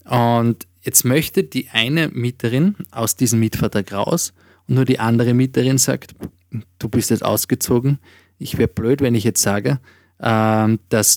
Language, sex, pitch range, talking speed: German, male, 100-125 Hz, 150 wpm